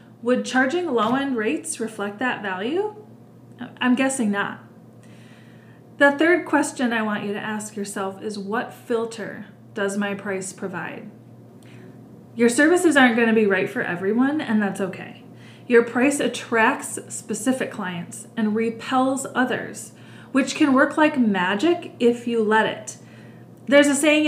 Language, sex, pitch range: English, female, 200-250 Hz